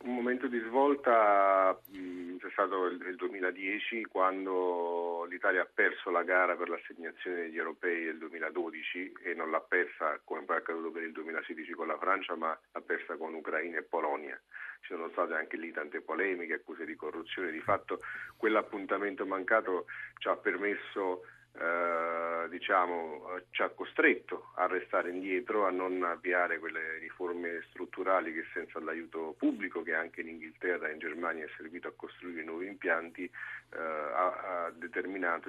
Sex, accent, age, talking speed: male, native, 40-59, 155 wpm